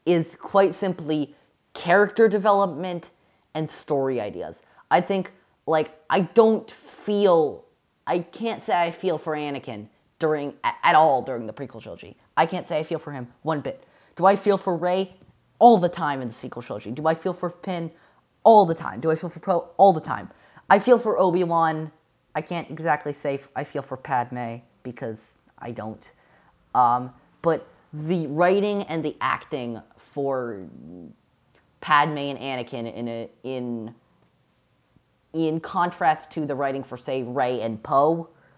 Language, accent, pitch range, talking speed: English, American, 130-175 Hz, 165 wpm